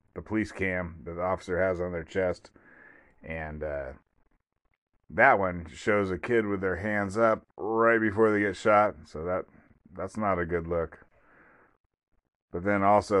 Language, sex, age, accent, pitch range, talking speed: English, male, 30-49, American, 85-125 Hz, 165 wpm